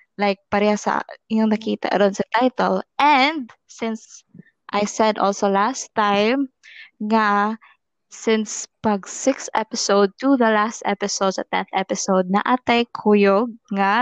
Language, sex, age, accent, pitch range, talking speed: Filipino, female, 20-39, native, 195-235 Hz, 130 wpm